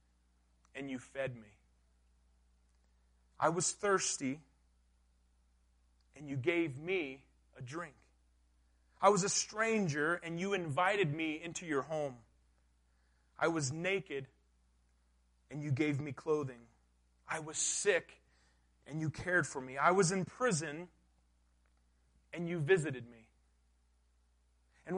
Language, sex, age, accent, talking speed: English, male, 30-49, American, 120 wpm